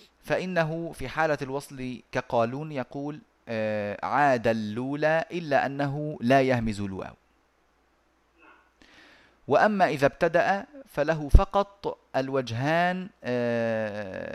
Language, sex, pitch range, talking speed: Arabic, male, 120-165 Hz, 80 wpm